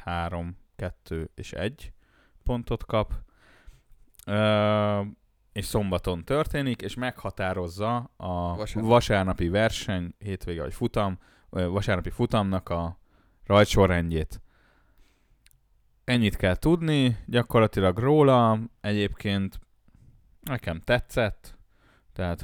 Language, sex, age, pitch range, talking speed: Hungarian, male, 20-39, 90-115 Hz, 85 wpm